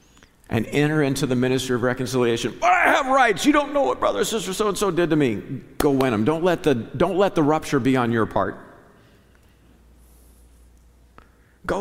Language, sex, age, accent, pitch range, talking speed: English, male, 50-69, American, 100-125 Hz, 175 wpm